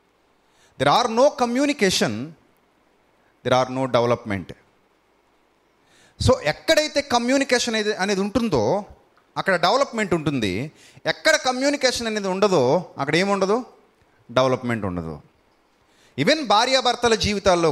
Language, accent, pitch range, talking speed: Telugu, native, 140-215 Hz, 100 wpm